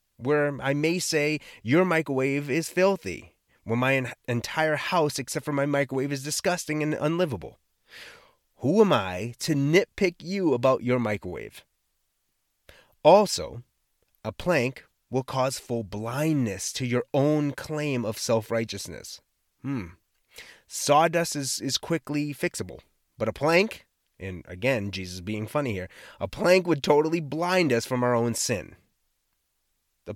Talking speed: 135 wpm